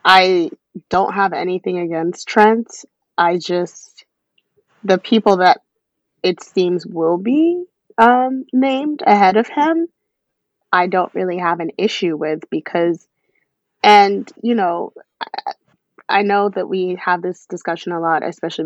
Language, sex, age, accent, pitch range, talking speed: English, female, 20-39, American, 170-210 Hz, 130 wpm